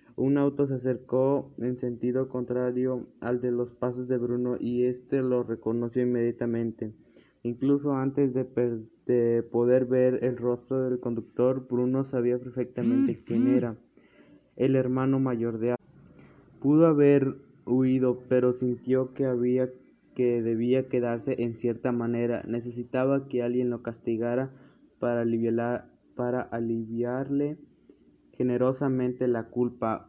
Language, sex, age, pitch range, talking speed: Spanish, male, 20-39, 120-130 Hz, 130 wpm